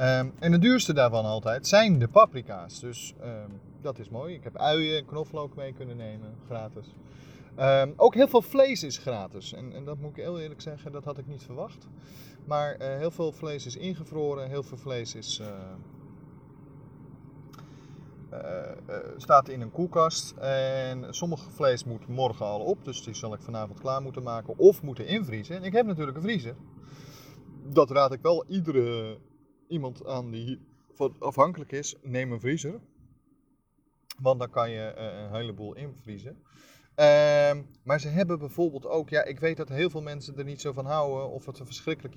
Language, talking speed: Dutch, 180 wpm